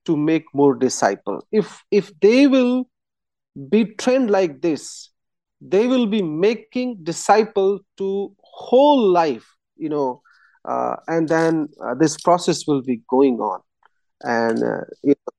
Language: English